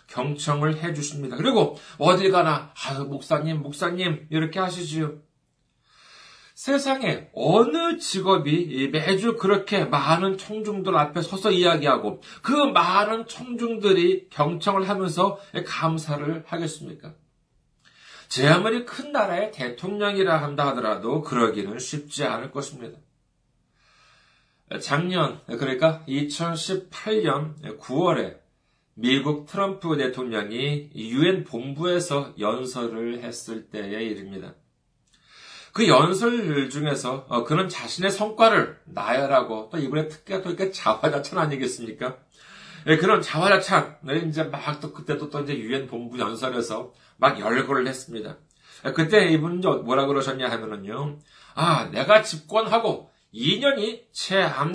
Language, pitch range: Korean, 140-190 Hz